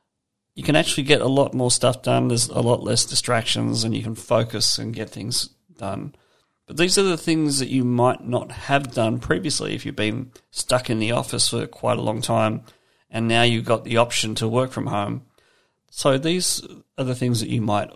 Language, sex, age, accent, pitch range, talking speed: English, male, 40-59, Australian, 115-135 Hz, 215 wpm